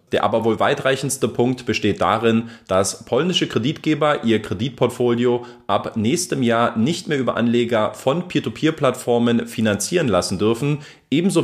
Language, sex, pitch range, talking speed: German, male, 110-135 Hz, 130 wpm